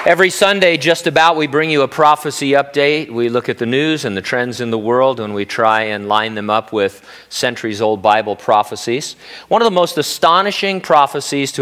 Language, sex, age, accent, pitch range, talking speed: English, male, 40-59, American, 115-155 Hz, 200 wpm